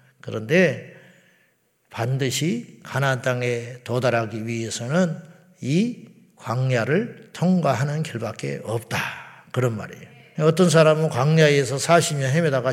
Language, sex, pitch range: Korean, male, 125-160 Hz